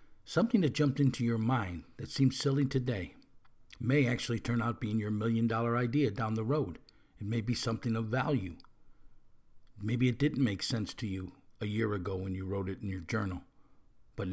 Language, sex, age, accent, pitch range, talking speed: English, male, 50-69, American, 110-130 Hz, 190 wpm